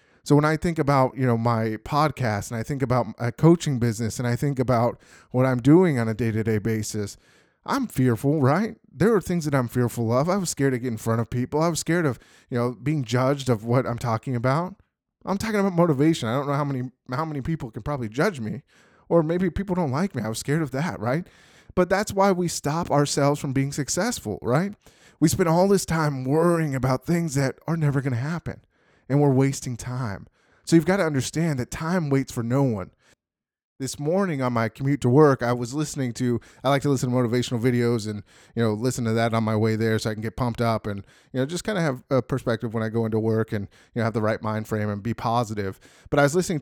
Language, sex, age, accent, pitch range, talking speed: English, male, 20-39, American, 115-155 Hz, 245 wpm